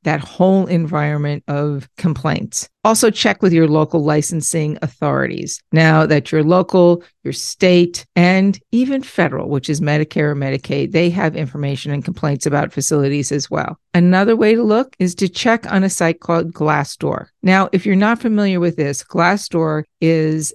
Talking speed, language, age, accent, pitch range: 165 wpm, English, 50-69, American, 155-190 Hz